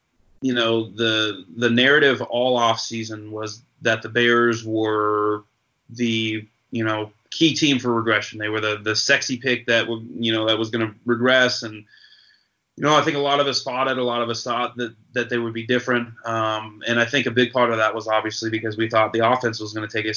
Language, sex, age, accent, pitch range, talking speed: English, male, 30-49, American, 110-125 Hz, 230 wpm